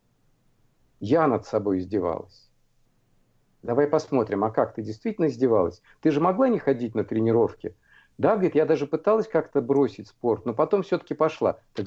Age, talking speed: 50-69, 155 wpm